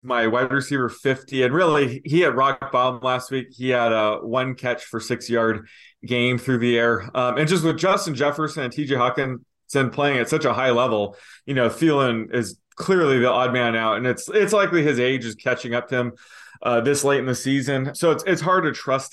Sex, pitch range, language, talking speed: male, 120-145 Hz, English, 220 wpm